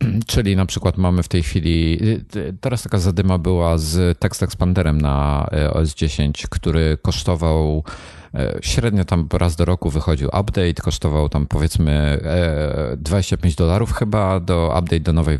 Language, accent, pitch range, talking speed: Polish, native, 80-100 Hz, 135 wpm